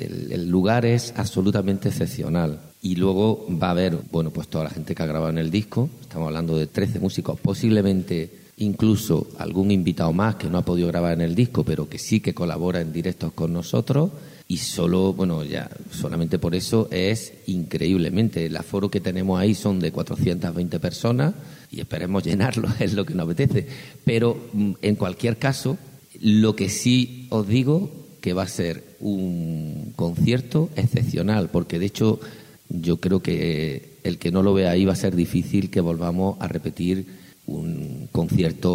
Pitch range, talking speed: 85-110 Hz, 175 wpm